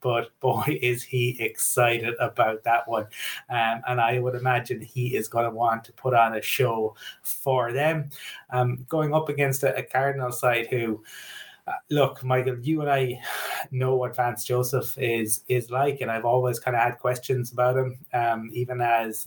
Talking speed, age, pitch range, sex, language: 185 wpm, 20-39, 115-130 Hz, male, English